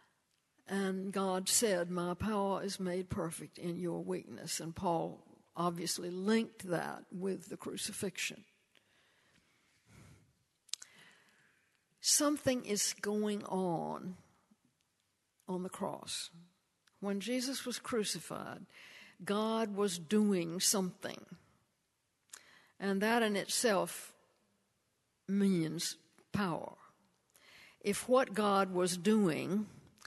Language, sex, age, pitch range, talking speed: English, female, 60-79, 175-205 Hz, 90 wpm